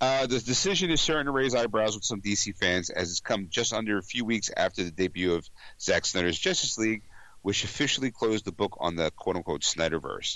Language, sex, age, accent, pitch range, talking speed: English, male, 50-69, American, 90-120 Hz, 215 wpm